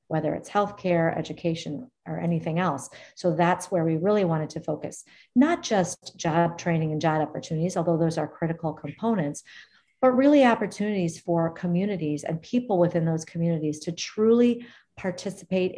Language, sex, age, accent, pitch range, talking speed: English, female, 40-59, American, 155-185 Hz, 150 wpm